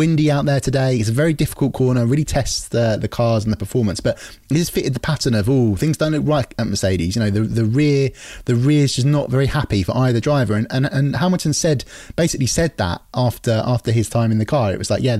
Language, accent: English, British